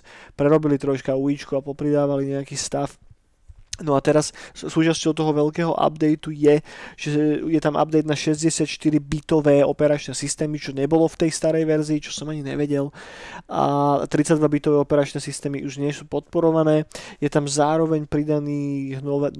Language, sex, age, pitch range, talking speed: Slovak, male, 20-39, 140-155 Hz, 150 wpm